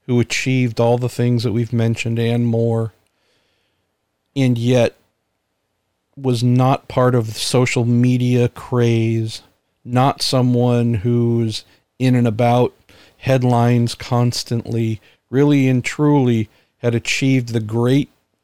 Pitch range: 110-125 Hz